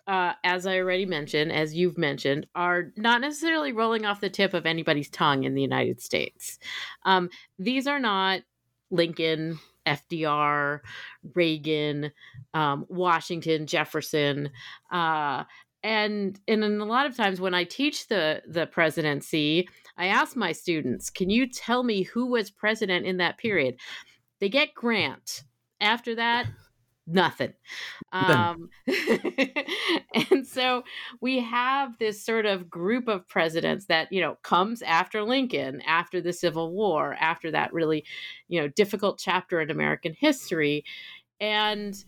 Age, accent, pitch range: 40-59, American, 165-235 Hz